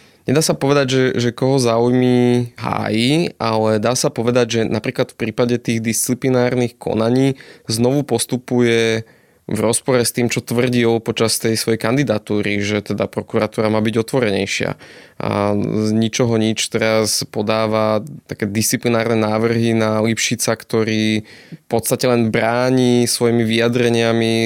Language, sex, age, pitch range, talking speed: Slovak, male, 20-39, 110-125 Hz, 135 wpm